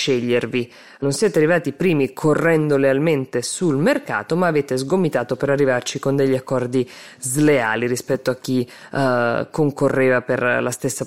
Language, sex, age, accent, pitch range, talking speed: Italian, female, 20-39, native, 125-150 Hz, 145 wpm